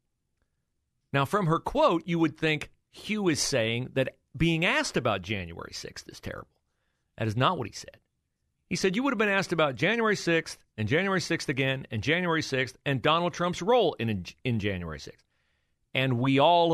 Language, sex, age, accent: English, male, 40-59, American